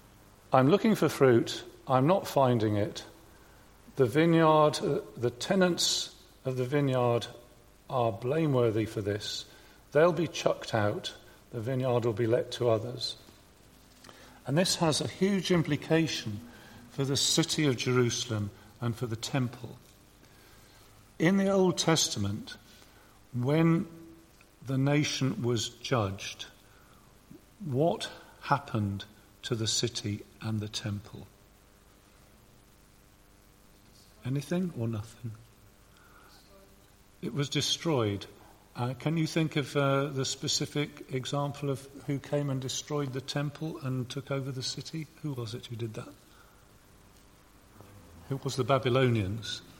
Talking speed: 120 wpm